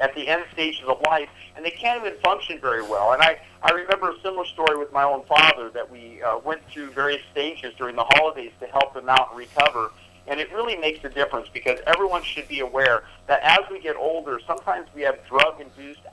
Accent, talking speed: American, 225 wpm